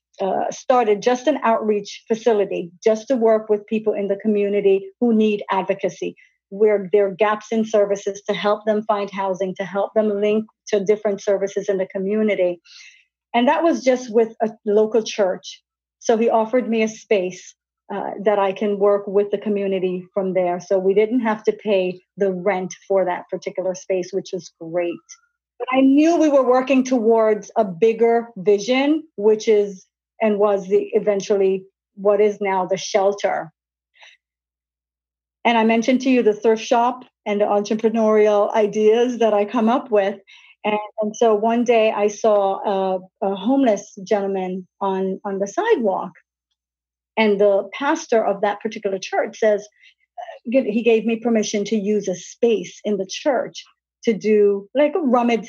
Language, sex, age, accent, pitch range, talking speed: English, female, 40-59, American, 195-225 Hz, 165 wpm